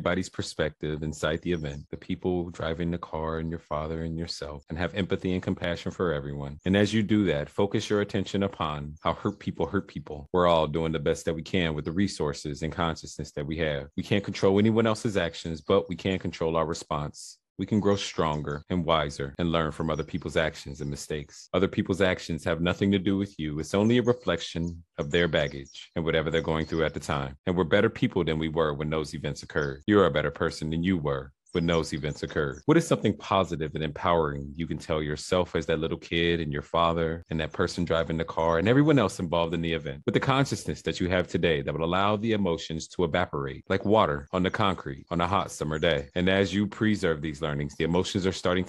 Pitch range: 80-95 Hz